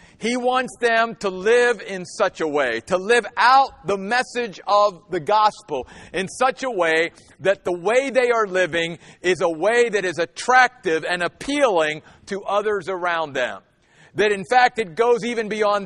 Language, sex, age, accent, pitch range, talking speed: English, male, 50-69, American, 185-235 Hz, 175 wpm